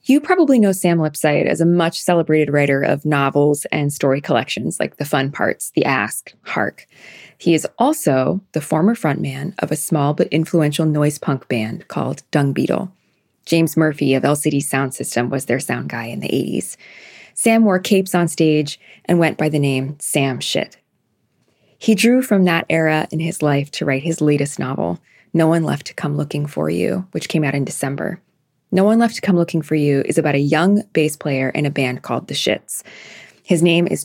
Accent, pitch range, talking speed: American, 140-175 Hz, 195 wpm